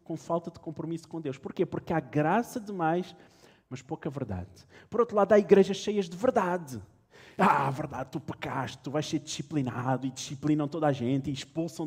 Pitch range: 115-155 Hz